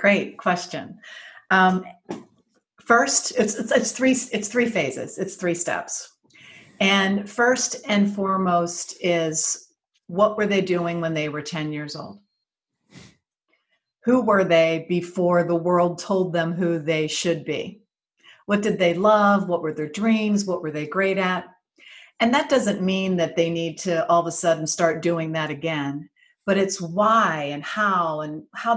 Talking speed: 160 wpm